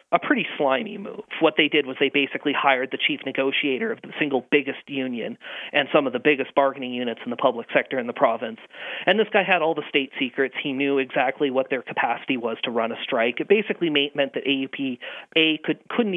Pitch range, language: 135-165 Hz, English